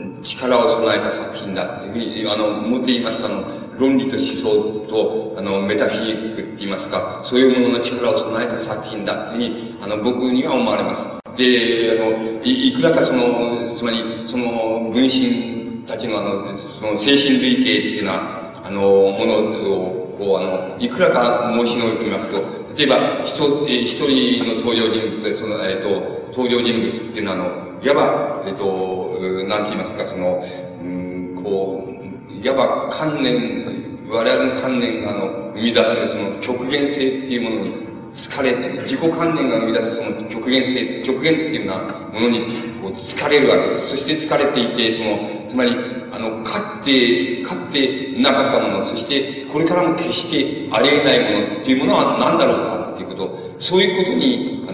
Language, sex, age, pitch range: Japanese, male, 40-59, 105-130 Hz